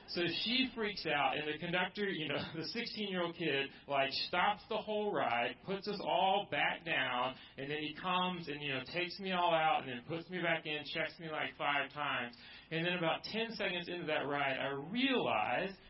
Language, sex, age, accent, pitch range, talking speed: English, male, 40-59, American, 150-205 Hz, 205 wpm